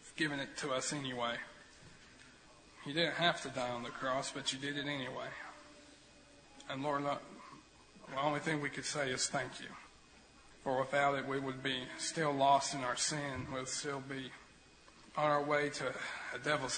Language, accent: English, American